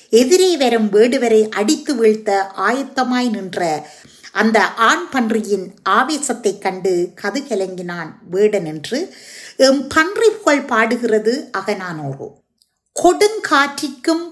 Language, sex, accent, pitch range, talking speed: Tamil, female, native, 220-320 Hz, 90 wpm